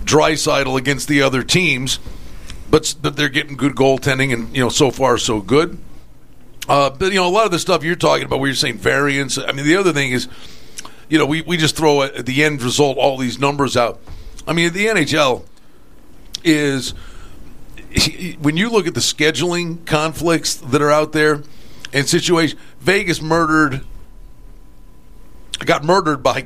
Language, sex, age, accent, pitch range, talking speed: English, male, 50-69, American, 135-170 Hz, 180 wpm